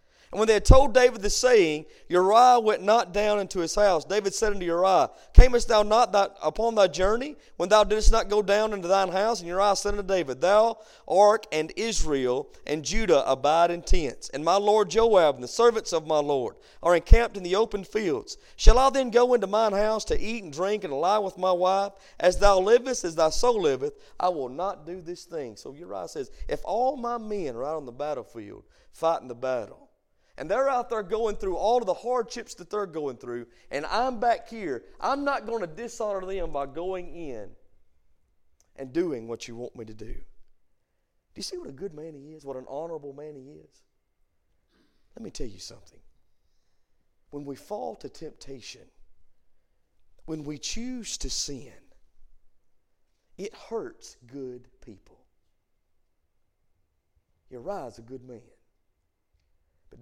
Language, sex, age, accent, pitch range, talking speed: English, male, 40-59, American, 130-220 Hz, 180 wpm